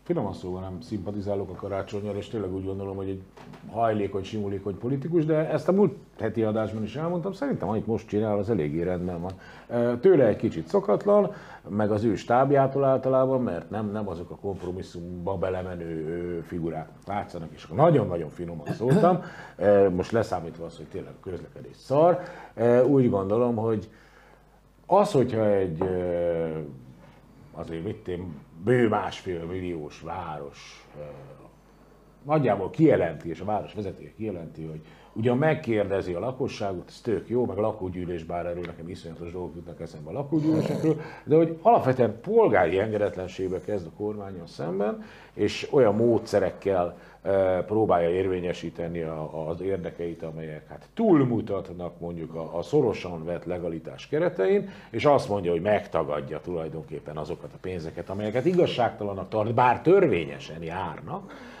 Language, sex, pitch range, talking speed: Hungarian, male, 85-120 Hz, 135 wpm